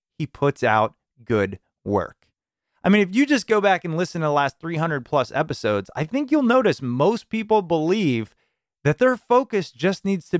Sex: male